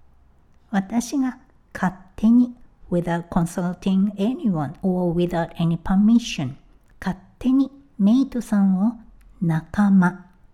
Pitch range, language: 190-250 Hz, Japanese